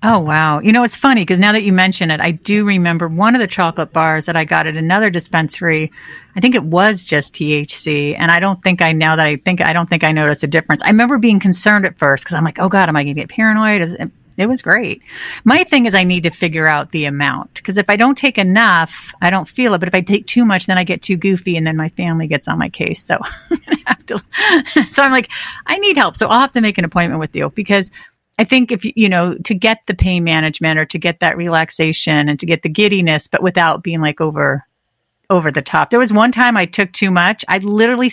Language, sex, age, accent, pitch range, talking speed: English, female, 50-69, American, 160-215 Hz, 265 wpm